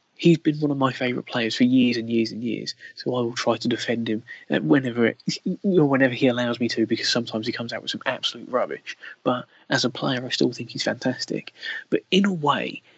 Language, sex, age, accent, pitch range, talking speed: English, male, 20-39, British, 125-155 Hz, 225 wpm